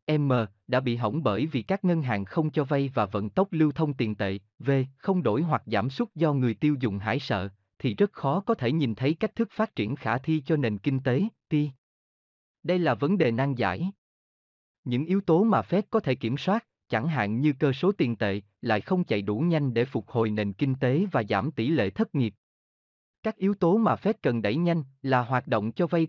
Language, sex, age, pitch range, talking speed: Vietnamese, male, 20-39, 115-160 Hz, 230 wpm